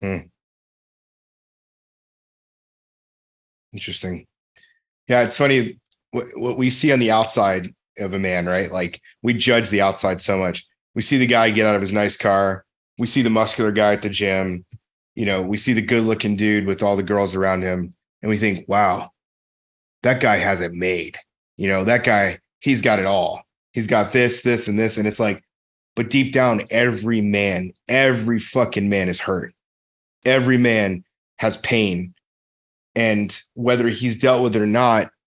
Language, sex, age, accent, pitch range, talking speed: English, male, 30-49, American, 95-120 Hz, 175 wpm